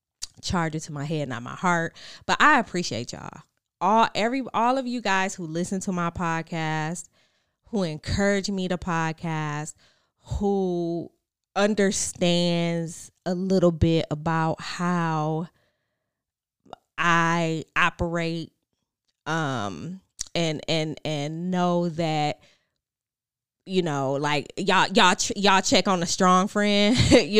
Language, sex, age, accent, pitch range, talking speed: English, female, 20-39, American, 155-220 Hz, 120 wpm